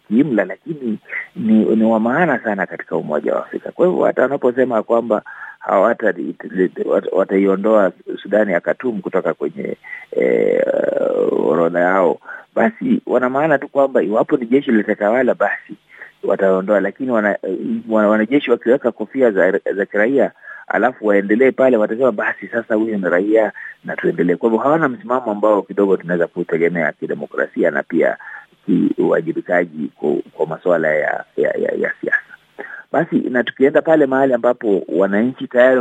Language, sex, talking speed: Swahili, male, 145 wpm